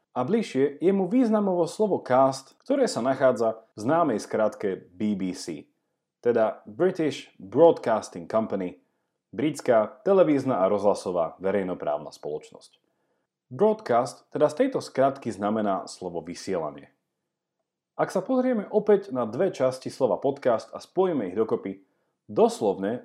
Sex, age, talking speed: male, 40-59, 120 wpm